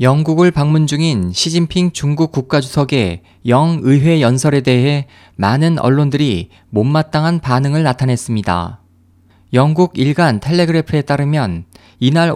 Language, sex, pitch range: Korean, male, 105-160 Hz